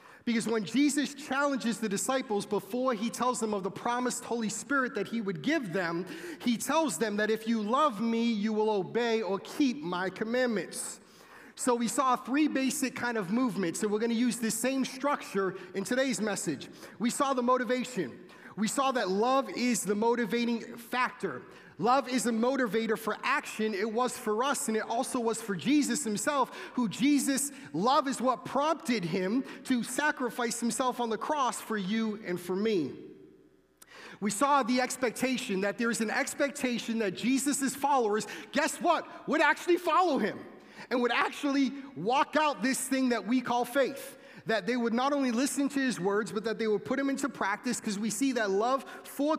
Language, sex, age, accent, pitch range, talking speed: Dutch, male, 30-49, American, 220-270 Hz, 185 wpm